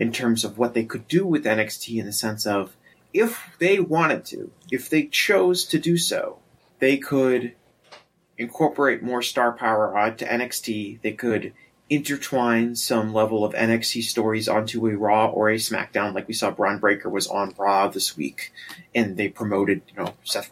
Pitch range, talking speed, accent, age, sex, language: 110-140 Hz, 180 wpm, American, 30-49, male, English